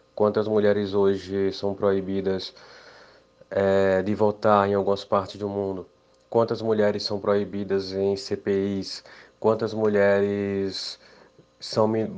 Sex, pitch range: male, 95-110 Hz